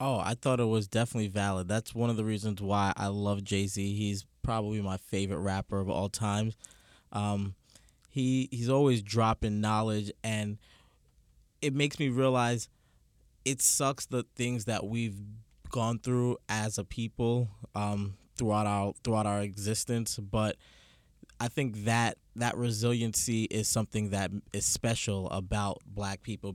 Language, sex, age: English, male, 20-39